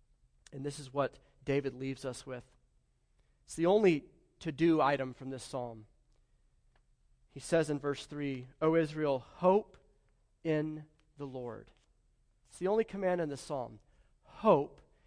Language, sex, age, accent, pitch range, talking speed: English, male, 40-59, American, 130-155 Hz, 140 wpm